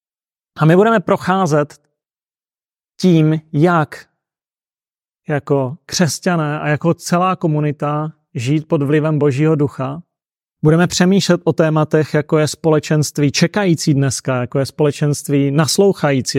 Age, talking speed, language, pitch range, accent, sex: 30-49, 110 wpm, Czech, 140-170 Hz, native, male